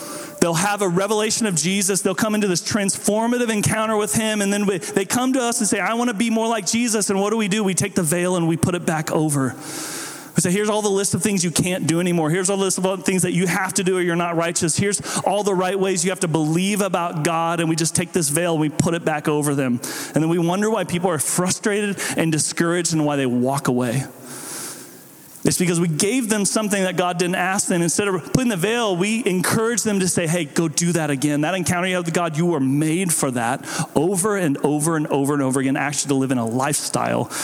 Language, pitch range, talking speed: English, 160-200 Hz, 255 wpm